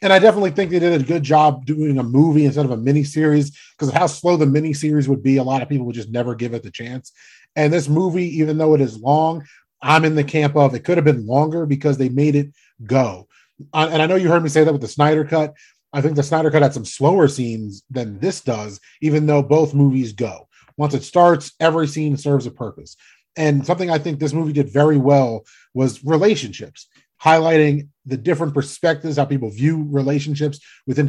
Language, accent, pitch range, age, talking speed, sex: English, American, 130-155 Hz, 30-49, 225 wpm, male